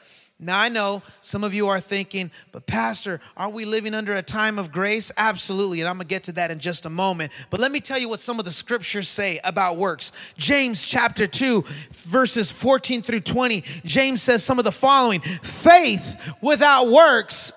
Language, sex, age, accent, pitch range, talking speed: English, male, 30-49, American, 205-285 Hz, 205 wpm